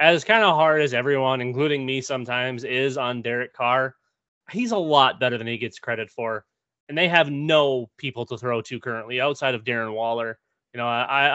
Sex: male